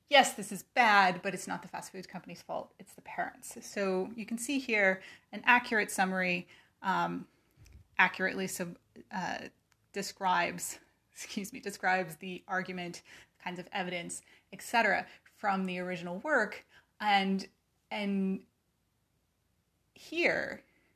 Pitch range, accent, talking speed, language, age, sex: 185-235 Hz, American, 125 wpm, English, 30-49, female